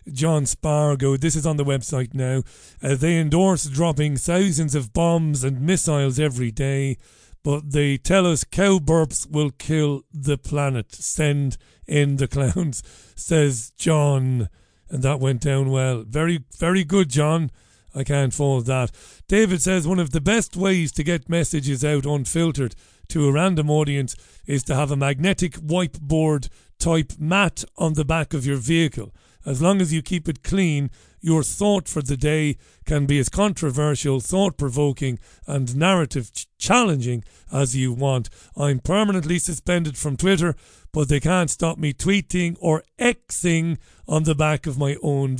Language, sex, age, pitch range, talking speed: English, male, 40-59, 135-165 Hz, 155 wpm